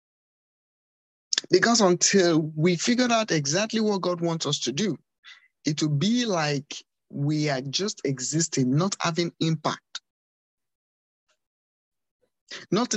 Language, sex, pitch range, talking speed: English, male, 145-200 Hz, 110 wpm